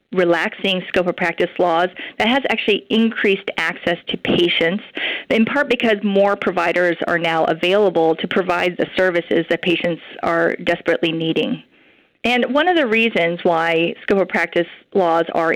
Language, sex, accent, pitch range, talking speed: English, female, American, 170-210 Hz, 155 wpm